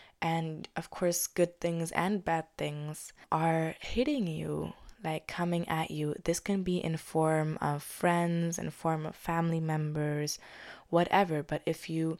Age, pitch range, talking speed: 20-39, 160-190 Hz, 150 wpm